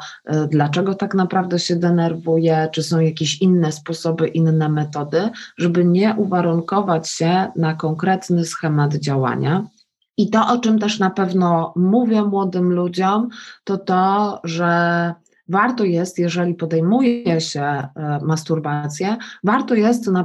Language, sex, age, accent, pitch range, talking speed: Polish, female, 20-39, native, 160-205 Hz, 125 wpm